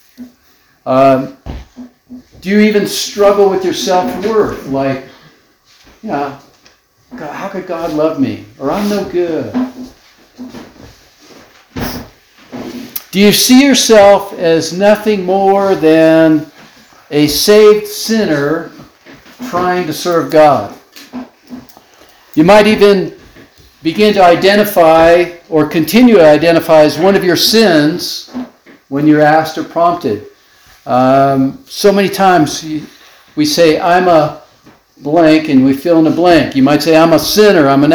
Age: 60-79